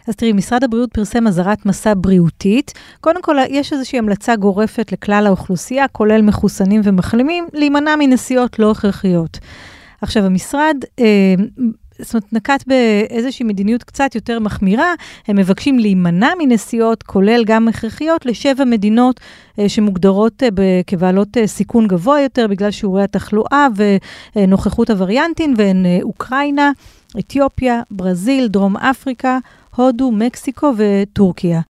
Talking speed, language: 125 wpm, Hebrew